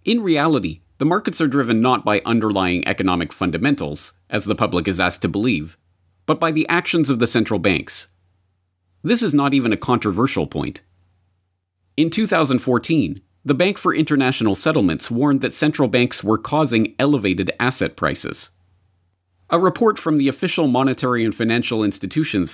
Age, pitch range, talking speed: 40-59, 95-135 Hz, 155 wpm